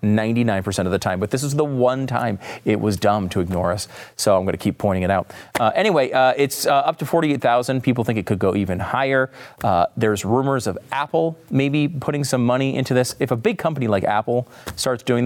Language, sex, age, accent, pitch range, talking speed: English, male, 30-49, American, 105-145 Hz, 230 wpm